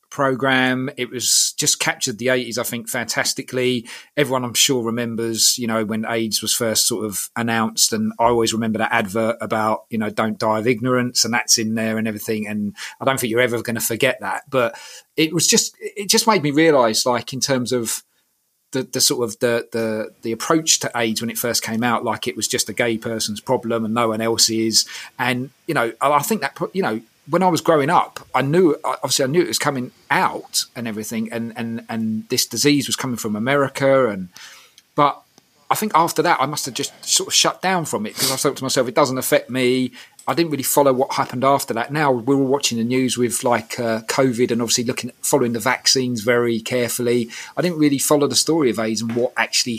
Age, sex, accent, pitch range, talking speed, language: 30-49, male, British, 115-130 Hz, 230 wpm, English